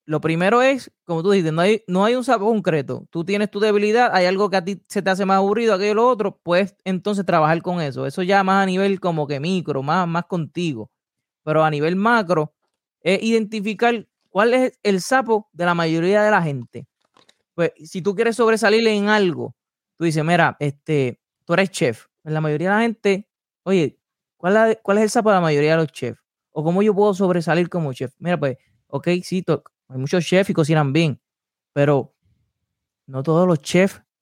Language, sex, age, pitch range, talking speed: Spanish, male, 20-39, 145-195 Hz, 200 wpm